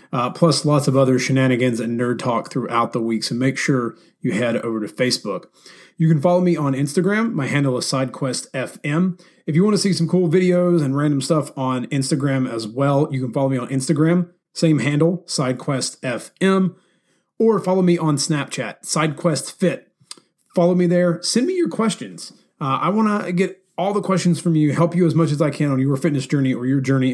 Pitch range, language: 130-170 Hz, English